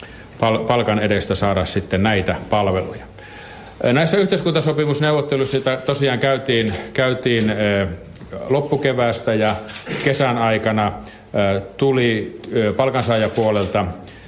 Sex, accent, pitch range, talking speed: male, native, 100-125 Hz, 70 wpm